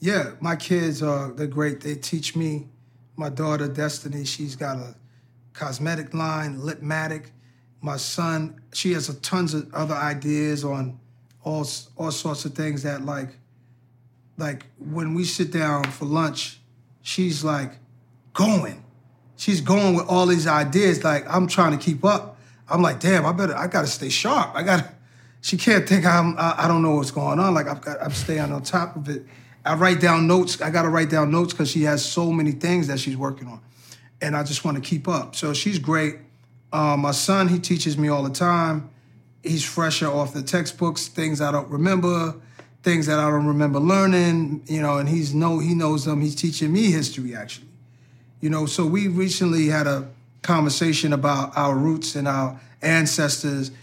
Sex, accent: male, American